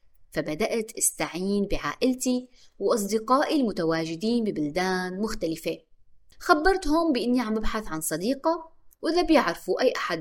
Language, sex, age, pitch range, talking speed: Arabic, female, 20-39, 170-255 Hz, 100 wpm